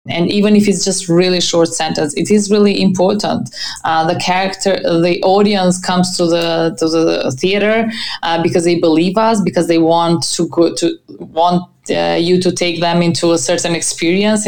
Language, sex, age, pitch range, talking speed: English, female, 20-39, 165-185 Hz, 180 wpm